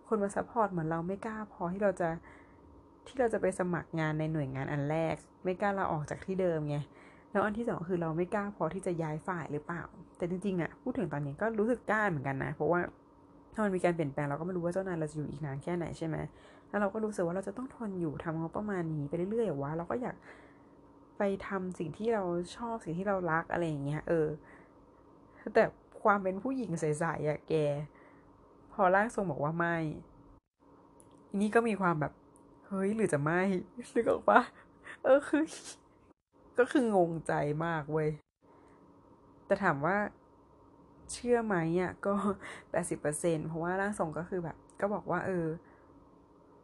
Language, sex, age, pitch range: Thai, female, 20-39, 155-200 Hz